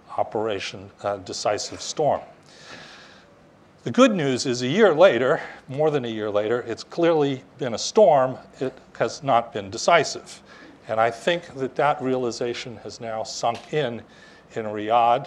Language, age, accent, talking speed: English, 40-59, American, 150 wpm